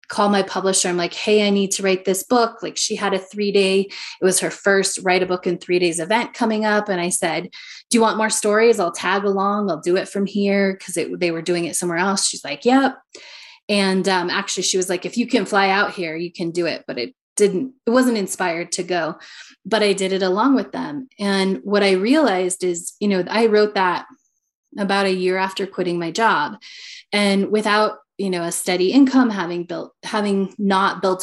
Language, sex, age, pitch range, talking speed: English, female, 20-39, 185-225 Hz, 225 wpm